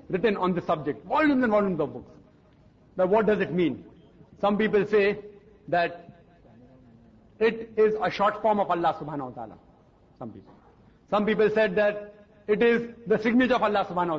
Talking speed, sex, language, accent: 175 wpm, male, English, Indian